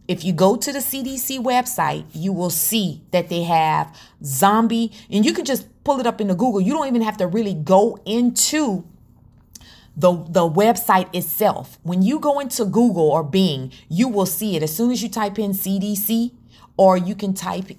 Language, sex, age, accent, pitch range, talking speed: English, female, 30-49, American, 170-225 Hz, 190 wpm